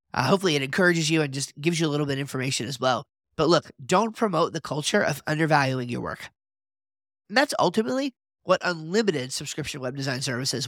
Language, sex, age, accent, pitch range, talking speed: English, male, 30-49, American, 135-170 Hz, 195 wpm